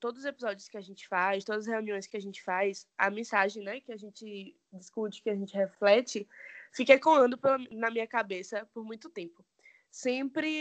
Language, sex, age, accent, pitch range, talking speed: Portuguese, female, 20-39, Brazilian, 210-265 Hz, 200 wpm